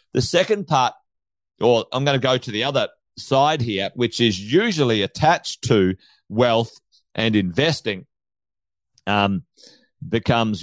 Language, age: English, 40-59